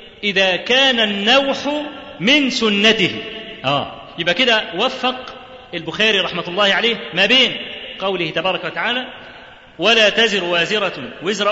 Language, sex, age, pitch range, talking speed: Arabic, male, 40-59, 170-230 Hz, 115 wpm